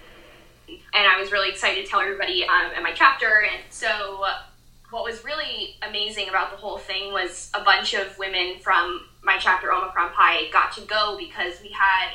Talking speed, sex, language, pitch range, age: 195 wpm, female, English, 180-210 Hz, 10-29